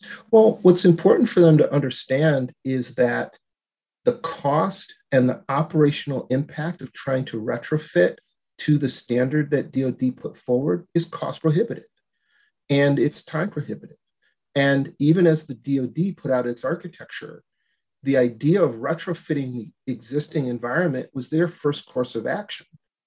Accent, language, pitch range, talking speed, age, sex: American, English, 125-160 Hz, 145 wpm, 40-59, male